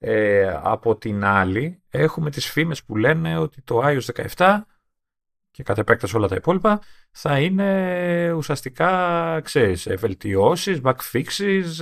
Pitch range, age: 105-155 Hz, 40-59